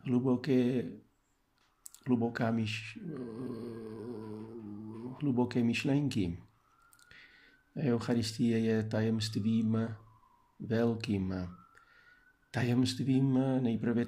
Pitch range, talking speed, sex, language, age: 110-130 Hz, 45 wpm, male, Czech, 50-69